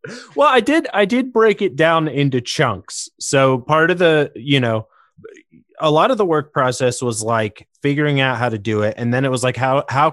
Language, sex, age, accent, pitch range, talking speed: English, male, 30-49, American, 115-145 Hz, 220 wpm